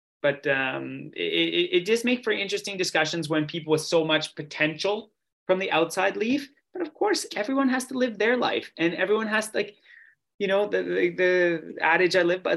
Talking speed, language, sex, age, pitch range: 195 wpm, English, male, 20-39, 150-190 Hz